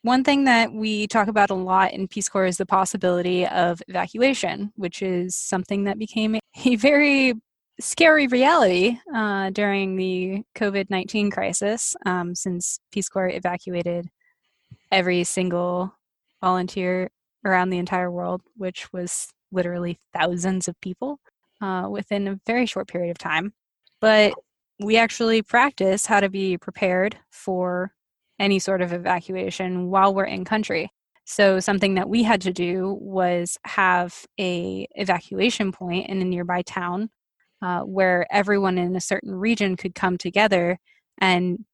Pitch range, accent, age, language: 180-205 Hz, American, 20-39, English